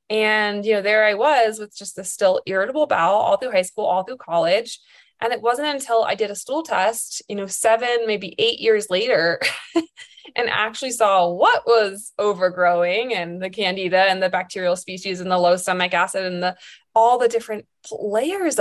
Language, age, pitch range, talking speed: English, 20-39, 190-285 Hz, 190 wpm